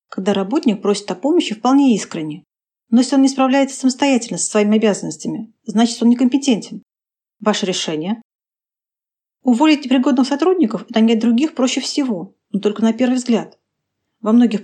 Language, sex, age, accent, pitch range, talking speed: Russian, female, 30-49, native, 205-255 Hz, 150 wpm